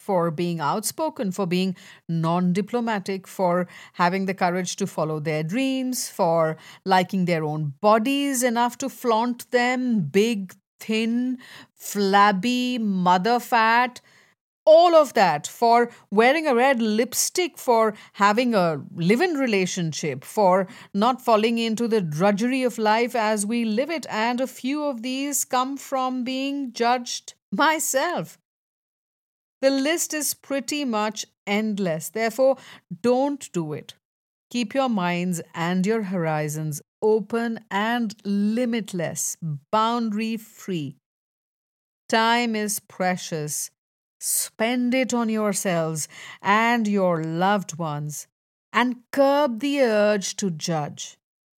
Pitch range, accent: 180-245 Hz, Indian